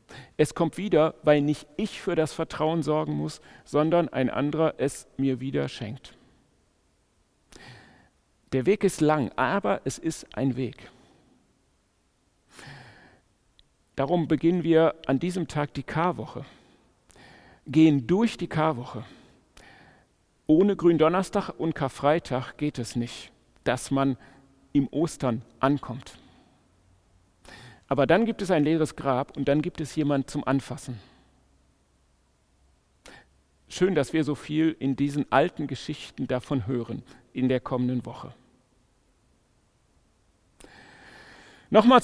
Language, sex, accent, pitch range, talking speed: German, male, German, 125-165 Hz, 115 wpm